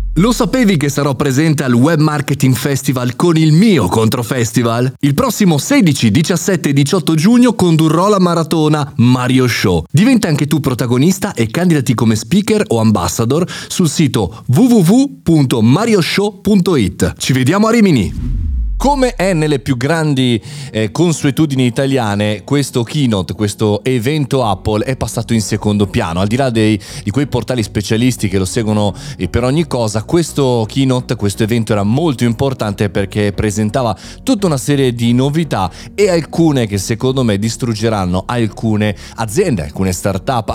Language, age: Italian, 30-49